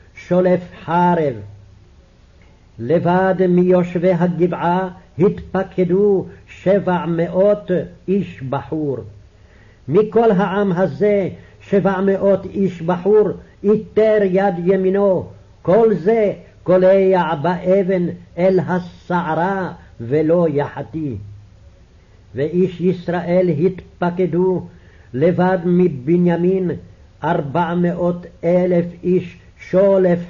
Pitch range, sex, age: 145-190 Hz, male, 60-79